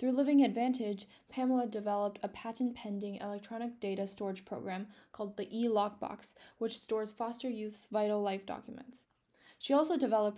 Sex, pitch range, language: female, 205-245 Hz, English